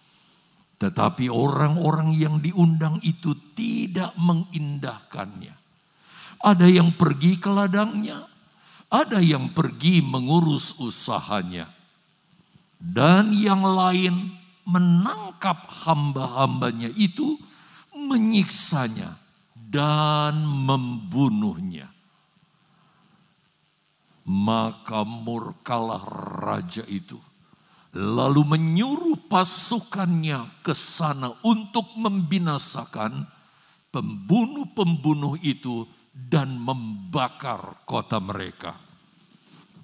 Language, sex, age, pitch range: Indonesian, male, 50-69, 145-195 Hz